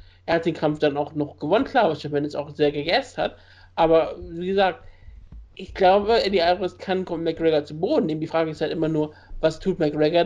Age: 60-79